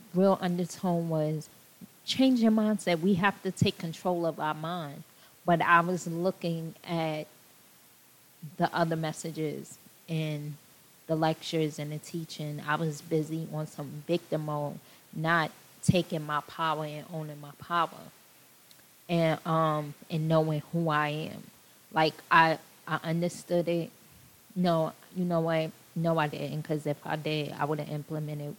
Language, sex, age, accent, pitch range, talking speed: English, female, 20-39, American, 155-170 Hz, 145 wpm